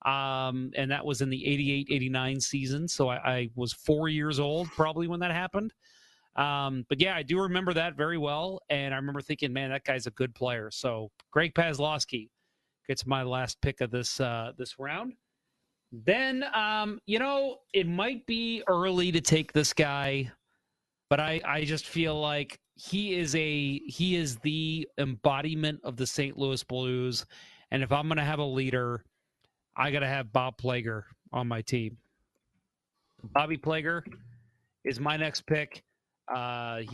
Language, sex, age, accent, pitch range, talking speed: English, male, 30-49, American, 130-155 Hz, 165 wpm